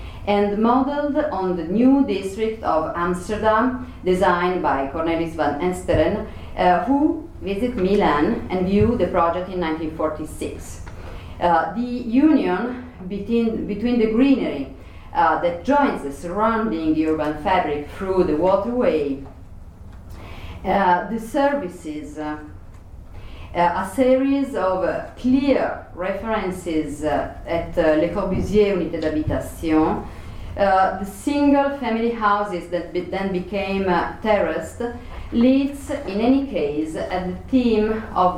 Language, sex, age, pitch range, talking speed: English, female, 40-59, 165-235 Hz, 115 wpm